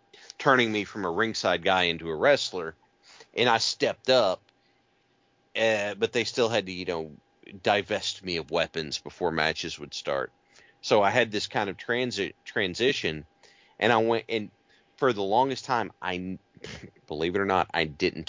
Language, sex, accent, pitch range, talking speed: English, male, American, 75-110 Hz, 170 wpm